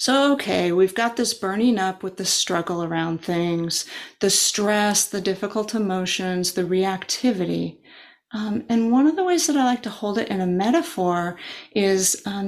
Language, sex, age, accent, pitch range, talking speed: English, female, 30-49, American, 195-245 Hz, 175 wpm